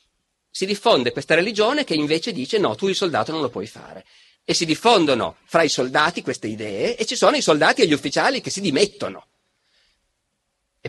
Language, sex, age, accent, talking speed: Italian, male, 40-59, native, 195 wpm